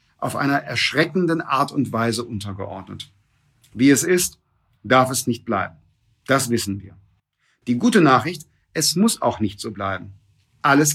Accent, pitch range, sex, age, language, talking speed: German, 115-160 Hz, male, 50-69, German, 150 wpm